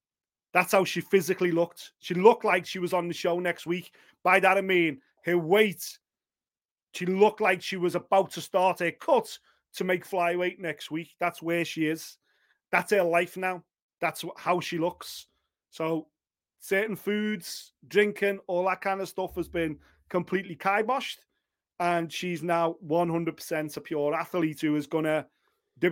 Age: 30-49